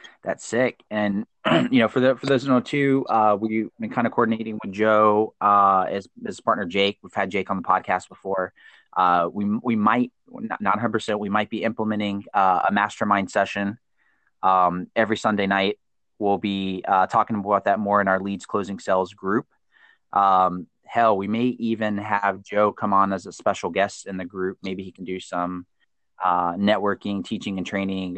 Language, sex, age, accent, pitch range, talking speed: English, male, 20-39, American, 95-110 Hz, 185 wpm